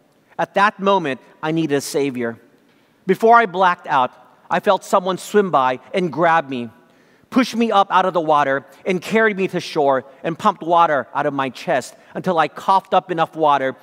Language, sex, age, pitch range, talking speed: English, male, 40-59, 145-200 Hz, 190 wpm